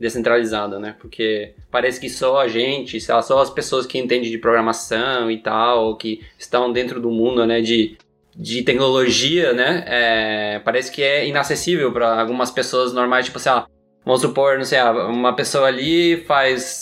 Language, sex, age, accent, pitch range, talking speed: Portuguese, male, 20-39, Brazilian, 110-135 Hz, 165 wpm